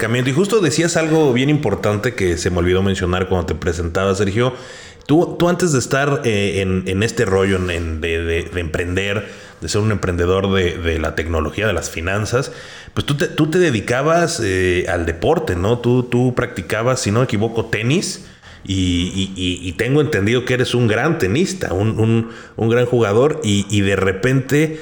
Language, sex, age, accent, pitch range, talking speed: Spanish, male, 30-49, Mexican, 95-125 Hz, 185 wpm